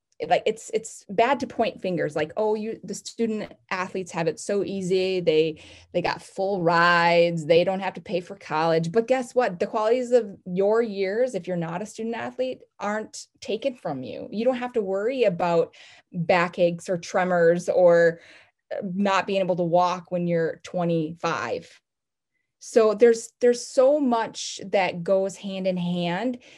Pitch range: 175-230 Hz